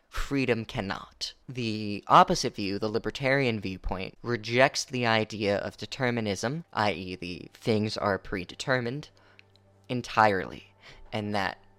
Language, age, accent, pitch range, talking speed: English, 20-39, American, 100-120 Hz, 105 wpm